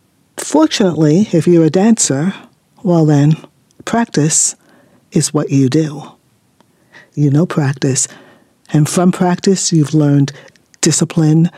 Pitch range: 145-175 Hz